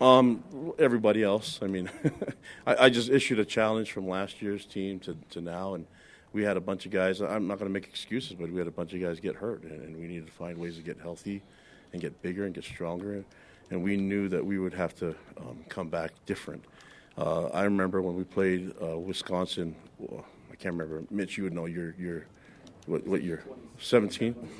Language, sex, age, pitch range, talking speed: English, male, 40-59, 85-100 Hz, 220 wpm